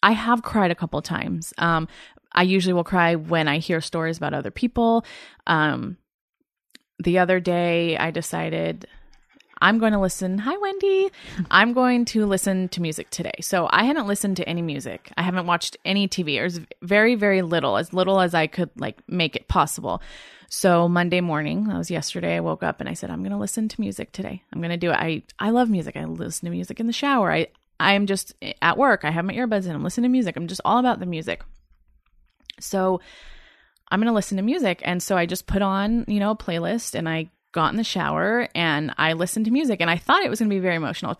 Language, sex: English, female